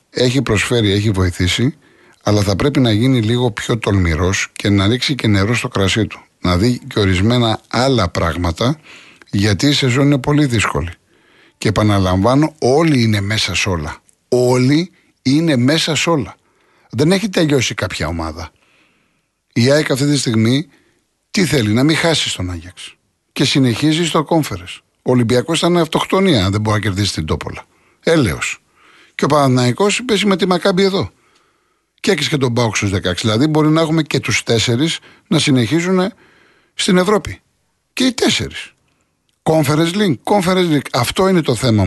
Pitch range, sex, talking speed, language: 105-155 Hz, male, 155 wpm, Greek